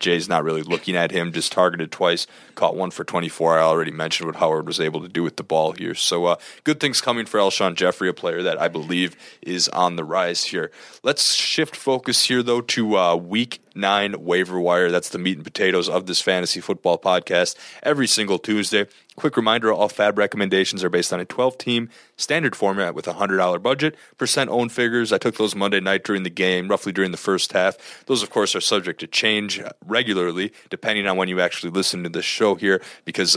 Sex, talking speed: male, 210 wpm